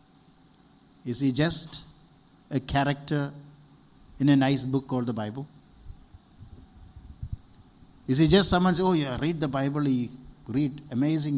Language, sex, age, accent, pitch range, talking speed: English, male, 60-79, Indian, 115-160 Hz, 135 wpm